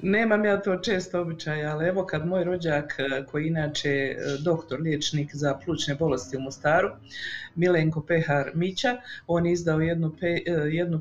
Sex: female